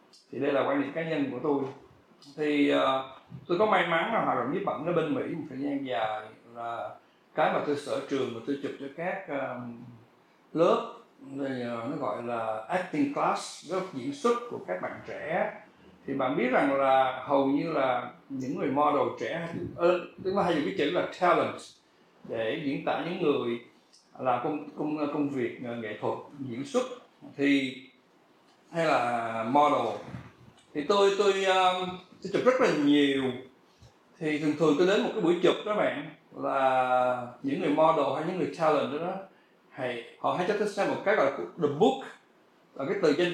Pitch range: 130-185 Hz